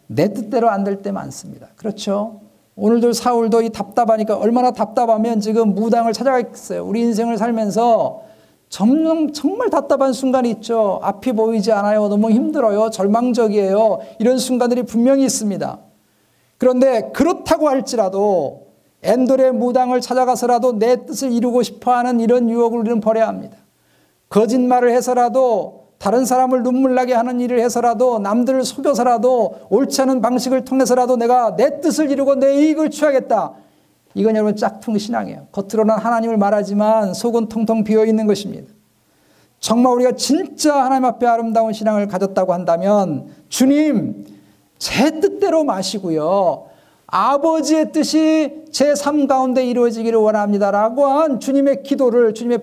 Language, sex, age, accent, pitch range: Korean, male, 50-69, native, 215-260 Hz